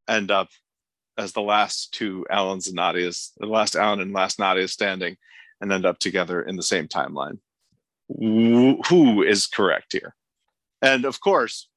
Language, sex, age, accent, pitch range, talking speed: English, male, 40-59, American, 100-135 Hz, 160 wpm